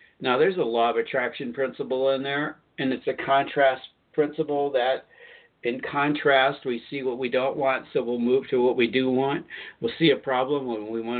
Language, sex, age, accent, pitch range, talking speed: English, male, 60-79, American, 120-180 Hz, 205 wpm